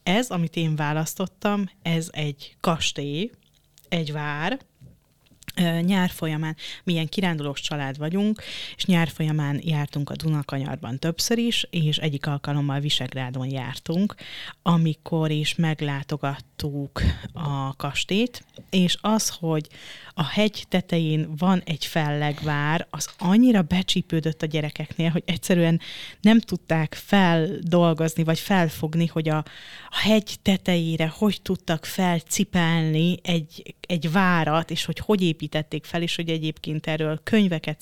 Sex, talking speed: female, 120 wpm